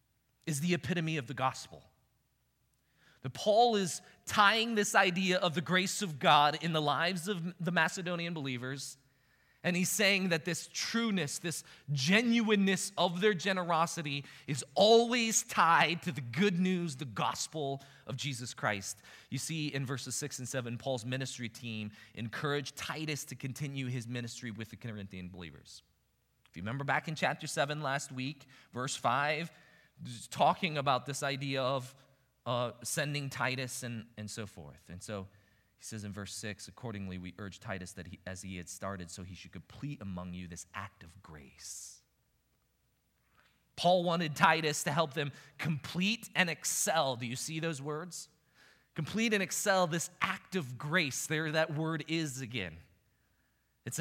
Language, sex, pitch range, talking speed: English, male, 120-170 Hz, 160 wpm